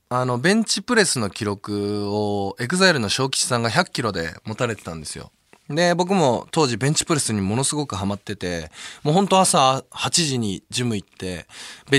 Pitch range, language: 105-165 Hz, Japanese